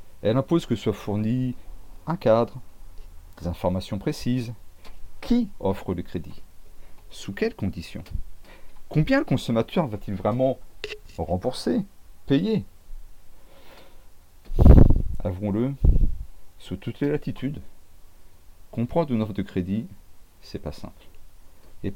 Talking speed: 105 wpm